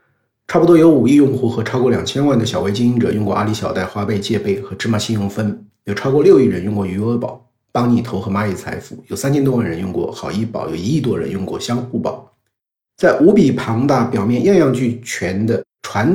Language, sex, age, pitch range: Chinese, male, 50-69, 105-130 Hz